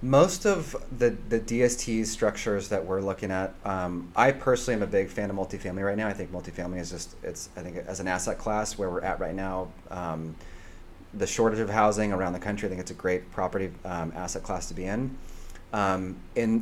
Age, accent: 30-49, American